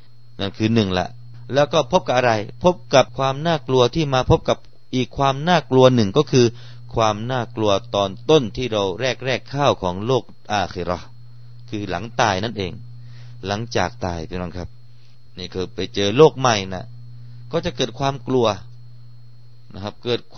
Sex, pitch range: male, 105-120 Hz